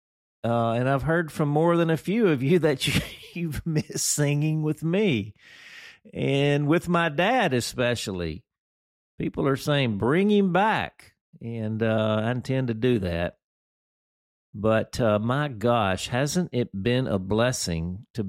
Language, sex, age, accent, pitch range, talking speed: English, male, 50-69, American, 95-120 Hz, 150 wpm